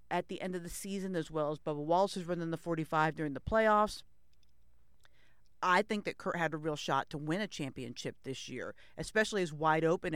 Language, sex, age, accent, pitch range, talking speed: English, female, 50-69, American, 150-180 Hz, 220 wpm